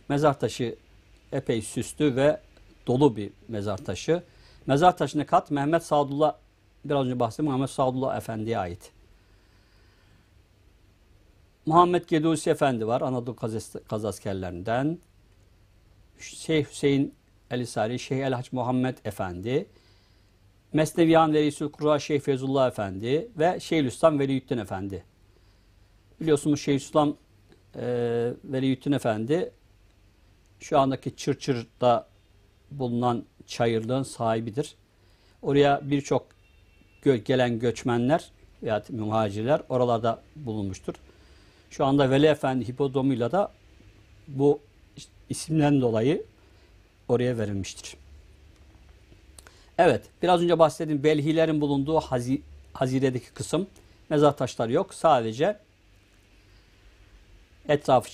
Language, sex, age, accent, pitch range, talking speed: Turkish, male, 60-79, native, 100-140 Hz, 100 wpm